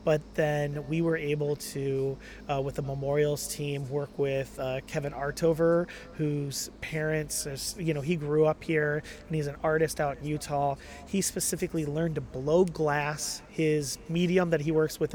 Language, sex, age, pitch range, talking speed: English, male, 30-49, 140-160 Hz, 170 wpm